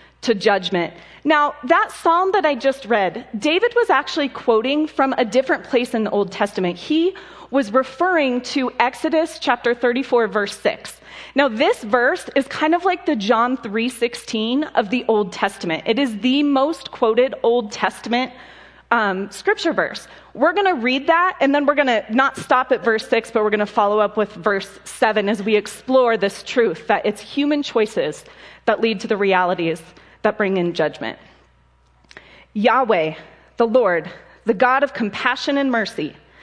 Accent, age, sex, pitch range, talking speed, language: American, 30-49, female, 210-275 Hz, 185 wpm, English